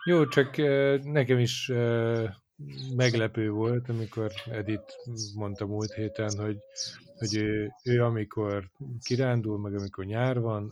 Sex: male